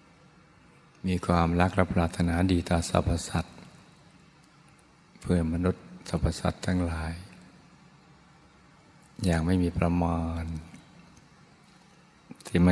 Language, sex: Thai, male